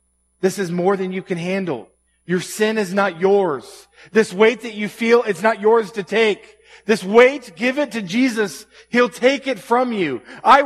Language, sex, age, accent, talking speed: English, male, 40-59, American, 190 wpm